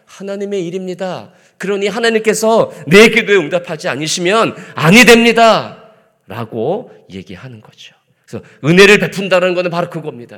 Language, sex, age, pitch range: Korean, male, 40-59, 165-225 Hz